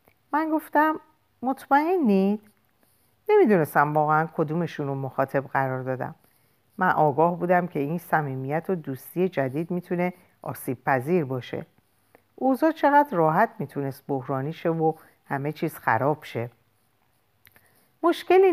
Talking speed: 110 wpm